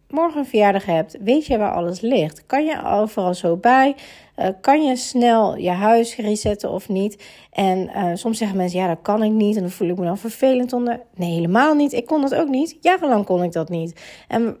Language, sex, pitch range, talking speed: Dutch, female, 195-265 Hz, 225 wpm